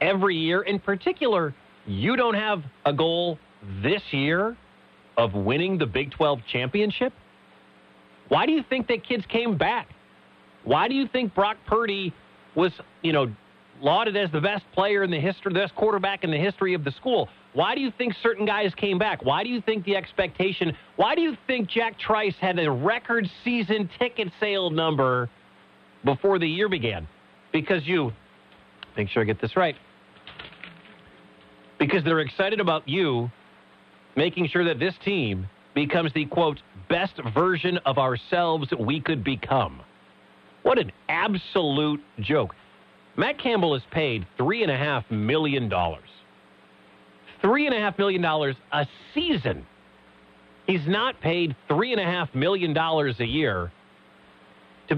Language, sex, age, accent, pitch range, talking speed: English, male, 40-59, American, 135-200 Hz, 145 wpm